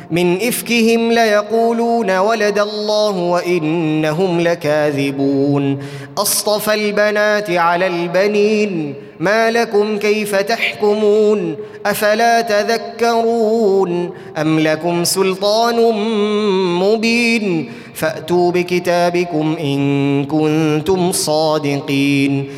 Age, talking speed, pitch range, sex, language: 20-39, 70 wpm, 175-215 Hz, male, Arabic